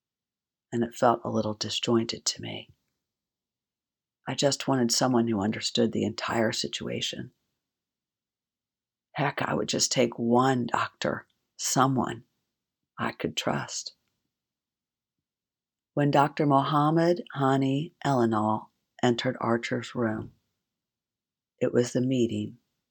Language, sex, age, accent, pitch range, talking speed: English, female, 50-69, American, 115-160 Hz, 105 wpm